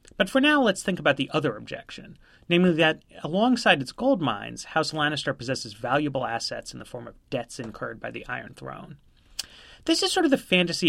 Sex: male